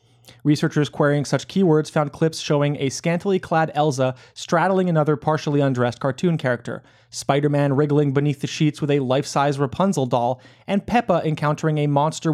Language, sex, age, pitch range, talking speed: English, male, 30-49, 130-155 Hz, 150 wpm